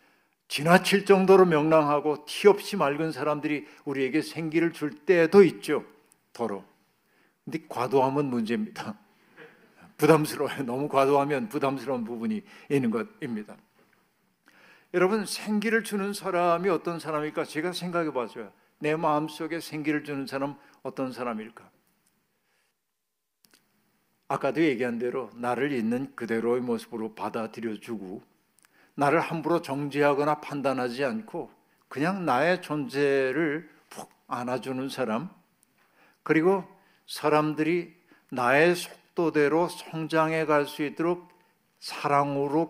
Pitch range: 135-175 Hz